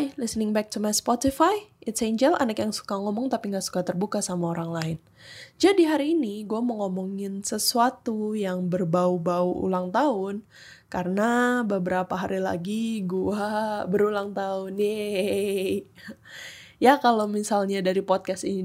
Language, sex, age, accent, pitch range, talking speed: Indonesian, female, 10-29, native, 180-235 Hz, 140 wpm